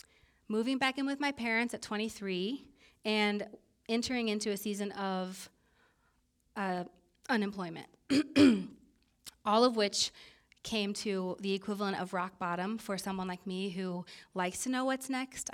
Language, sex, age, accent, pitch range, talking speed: English, female, 30-49, American, 185-220 Hz, 140 wpm